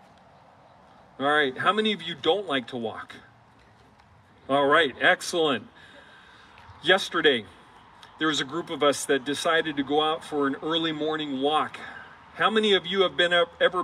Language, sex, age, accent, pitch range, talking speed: English, male, 40-59, American, 135-195 Hz, 165 wpm